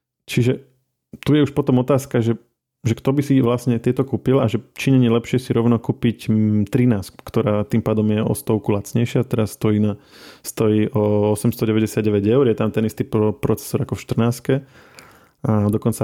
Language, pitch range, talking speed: Slovak, 105-120 Hz, 170 wpm